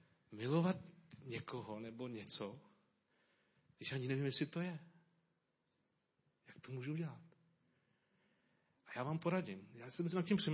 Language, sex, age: Czech, male, 40-59